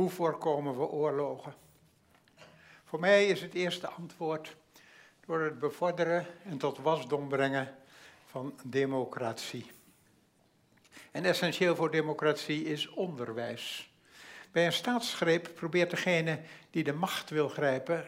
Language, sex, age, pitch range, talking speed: Dutch, male, 60-79, 145-185 Hz, 115 wpm